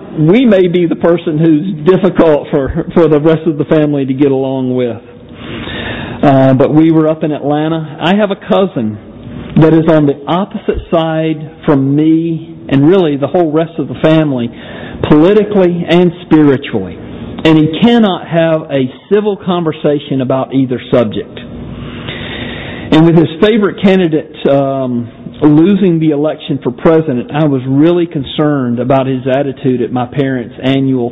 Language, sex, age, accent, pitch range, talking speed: English, male, 50-69, American, 135-165 Hz, 155 wpm